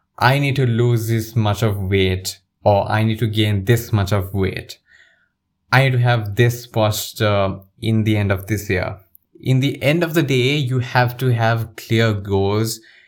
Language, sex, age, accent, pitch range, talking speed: English, male, 20-39, Indian, 100-120 Hz, 190 wpm